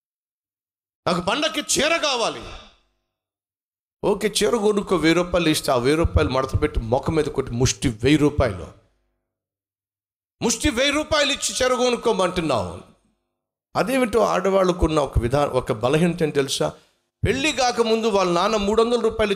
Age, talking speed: 50-69, 125 wpm